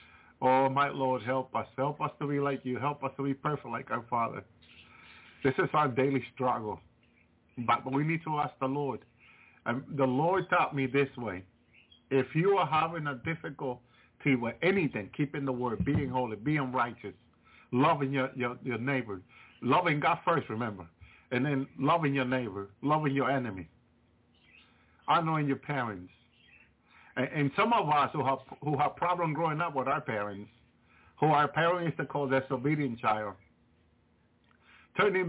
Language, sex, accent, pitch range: English, male, American, 115-145 Hz